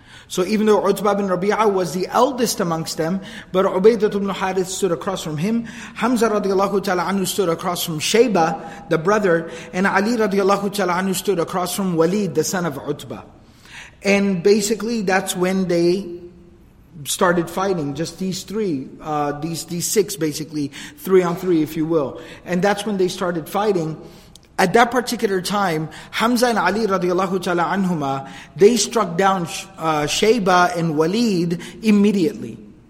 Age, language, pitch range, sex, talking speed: 30-49, English, 165-205 Hz, male, 155 wpm